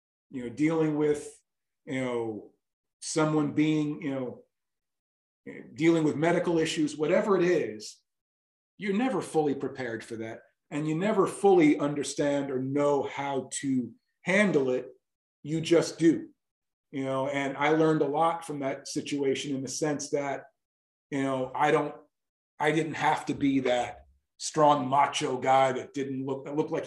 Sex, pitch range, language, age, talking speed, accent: male, 130-155 Hz, English, 40-59, 155 wpm, American